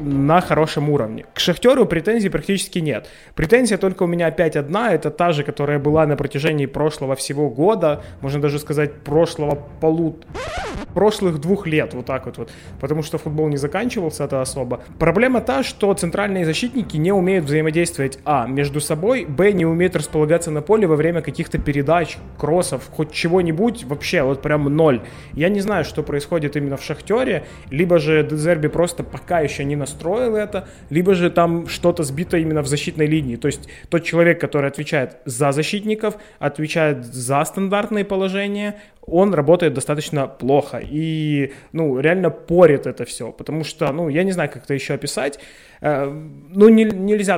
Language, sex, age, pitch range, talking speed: Ukrainian, male, 20-39, 145-175 Hz, 165 wpm